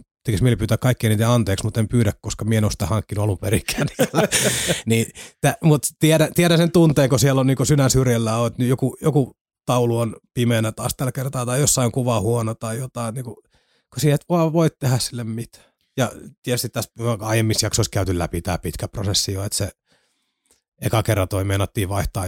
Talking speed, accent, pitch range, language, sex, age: 175 wpm, native, 105-125 Hz, Finnish, male, 30-49